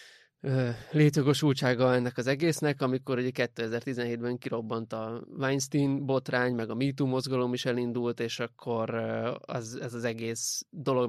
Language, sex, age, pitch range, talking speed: Hungarian, male, 20-39, 120-135 Hz, 125 wpm